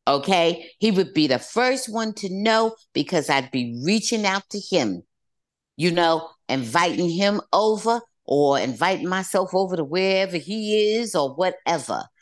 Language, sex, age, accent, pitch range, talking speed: English, female, 50-69, American, 155-240 Hz, 150 wpm